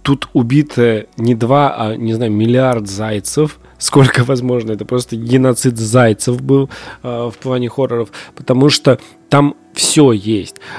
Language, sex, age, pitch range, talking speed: Russian, male, 20-39, 115-130 Hz, 140 wpm